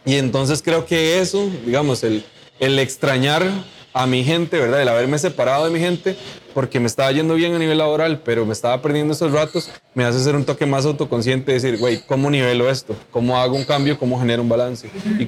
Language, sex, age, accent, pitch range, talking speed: Spanish, male, 20-39, Colombian, 125-165 Hz, 210 wpm